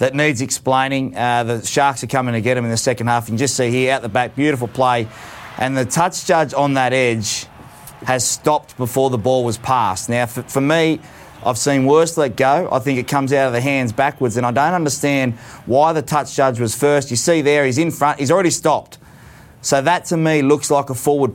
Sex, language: male, English